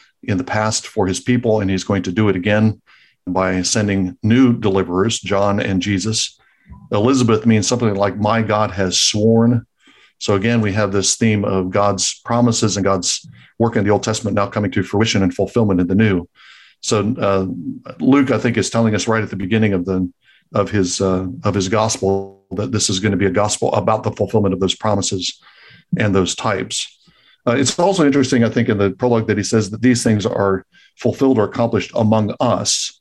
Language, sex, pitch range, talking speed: English, male, 100-115 Hz, 200 wpm